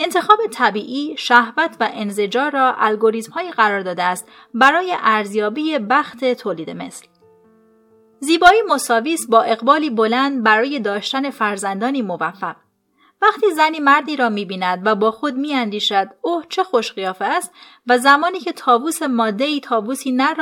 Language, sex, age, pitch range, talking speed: Persian, female, 30-49, 215-295 Hz, 130 wpm